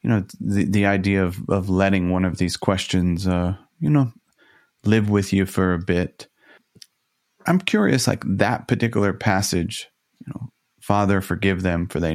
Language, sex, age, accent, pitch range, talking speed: English, male, 30-49, American, 90-110 Hz, 170 wpm